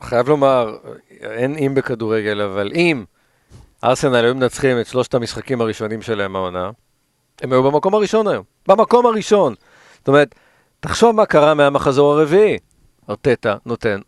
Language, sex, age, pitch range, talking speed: Hebrew, male, 50-69, 115-145 Hz, 135 wpm